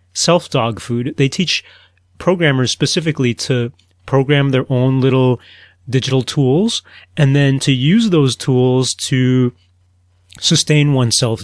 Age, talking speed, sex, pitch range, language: 30-49, 115 wpm, male, 115-140 Hz, English